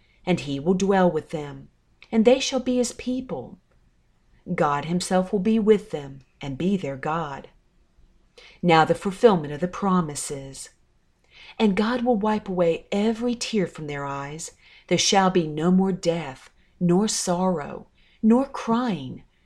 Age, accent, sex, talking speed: 40-59, American, female, 150 wpm